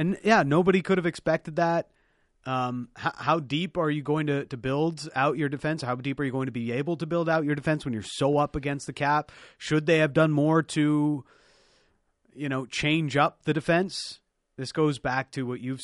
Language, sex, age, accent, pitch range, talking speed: English, male, 30-49, American, 115-150 Hz, 220 wpm